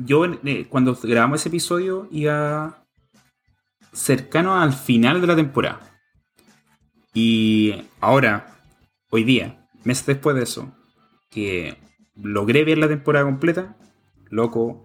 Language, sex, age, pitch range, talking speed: Spanish, male, 30-49, 115-155 Hz, 110 wpm